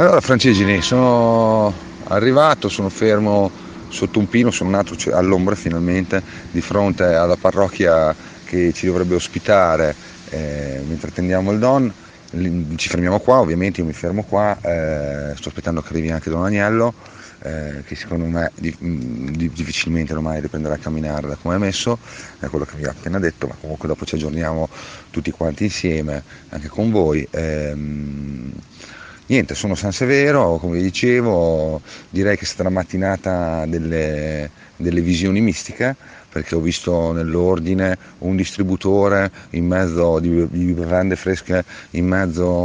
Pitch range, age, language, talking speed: 80-100 Hz, 30-49, Italian, 150 wpm